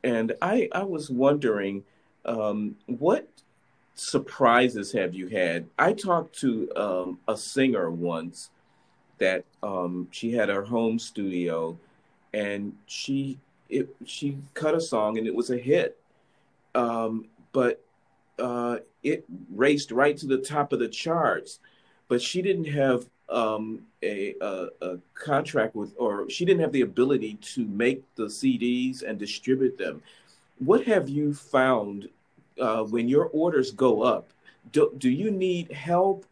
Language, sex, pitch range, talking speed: English, male, 110-150 Hz, 140 wpm